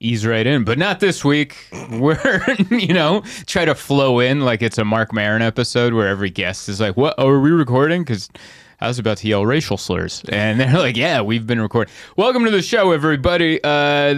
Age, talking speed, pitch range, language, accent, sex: 20-39, 215 wpm, 105-145 Hz, English, American, male